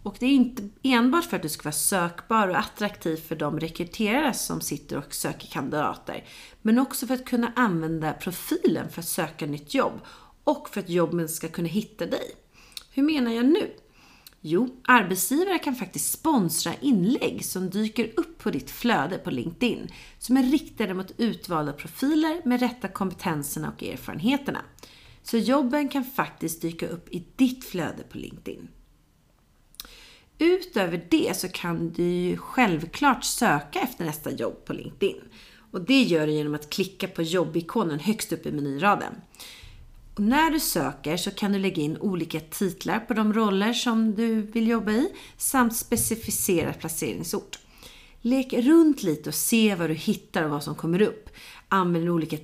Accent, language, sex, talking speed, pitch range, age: native, Swedish, female, 165 wpm, 170-250 Hz, 30-49